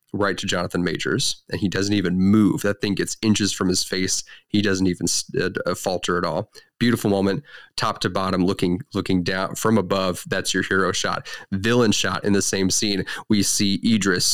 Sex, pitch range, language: male, 95-110 Hz, English